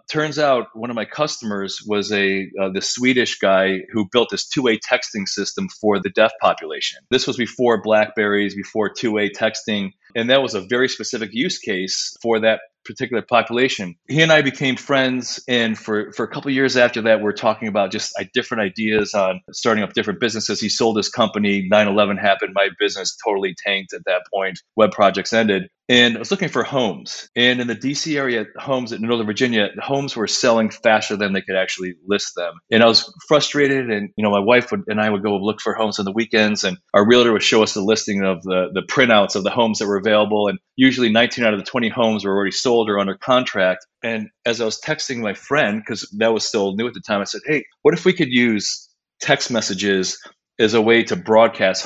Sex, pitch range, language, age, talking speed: male, 100-125 Hz, English, 30-49, 220 wpm